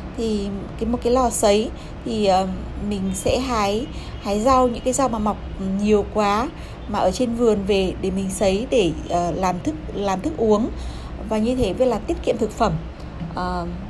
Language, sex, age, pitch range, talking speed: English, female, 20-39, 200-255 Hz, 185 wpm